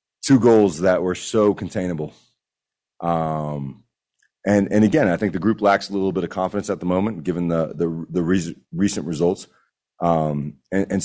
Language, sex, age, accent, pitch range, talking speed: English, male, 30-49, American, 80-95 Hz, 180 wpm